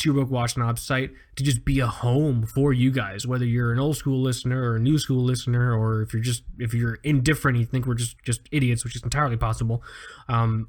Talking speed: 235 wpm